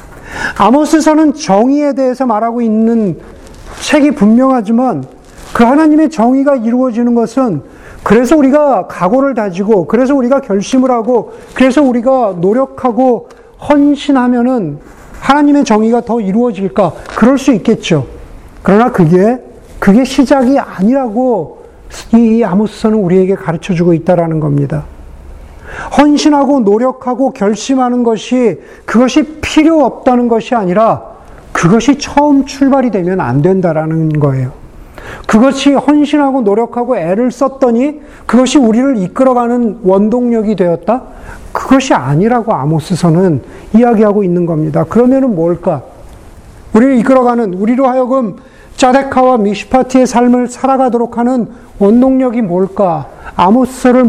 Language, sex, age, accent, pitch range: Korean, male, 40-59, native, 195-260 Hz